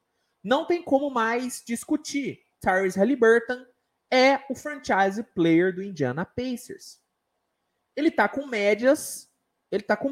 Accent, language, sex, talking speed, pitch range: Brazilian, Portuguese, male, 125 wpm, 200-305 Hz